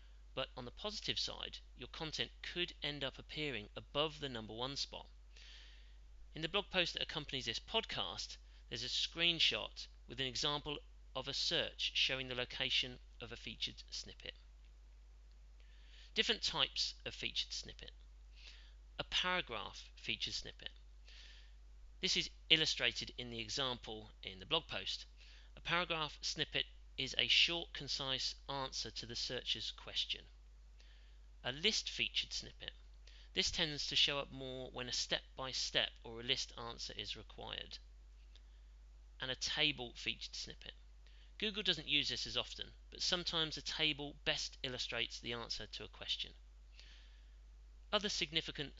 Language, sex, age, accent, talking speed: English, male, 40-59, British, 145 wpm